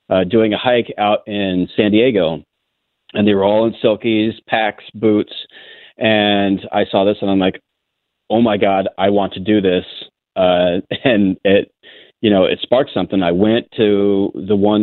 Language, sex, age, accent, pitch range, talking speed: English, male, 30-49, American, 95-105 Hz, 180 wpm